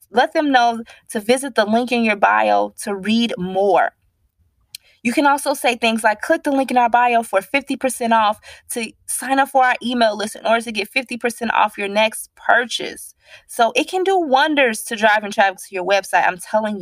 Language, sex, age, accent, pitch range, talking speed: English, female, 20-39, American, 205-275 Hz, 205 wpm